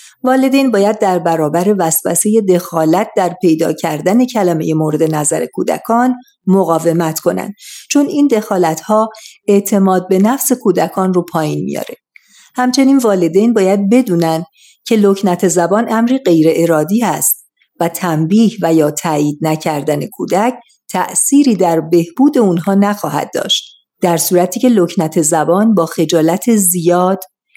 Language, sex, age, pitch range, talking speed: Persian, female, 50-69, 170-220 Hz, 125 wpm